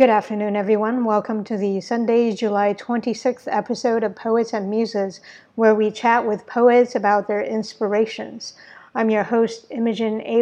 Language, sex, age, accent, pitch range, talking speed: English, female, 50-69, American, 210-235 Hz, 155 wpm